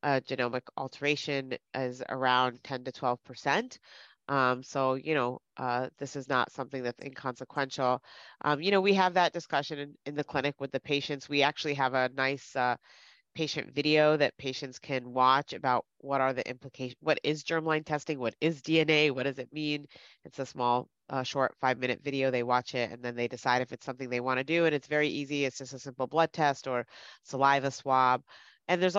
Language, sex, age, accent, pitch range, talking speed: English, female, 30-49, American, 130-150 Hz, 200 wpm